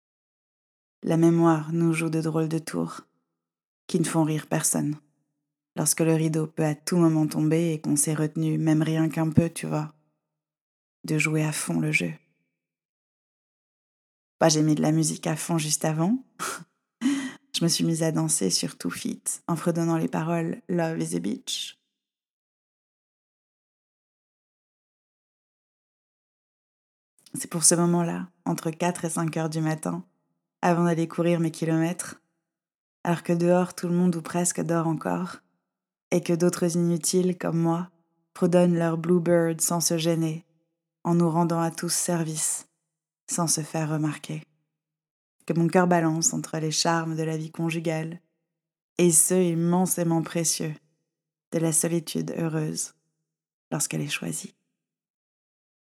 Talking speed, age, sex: 145 wpm, 20-39, female